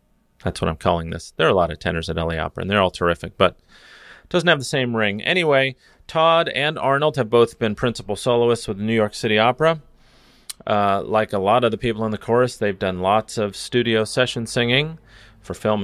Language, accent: English, American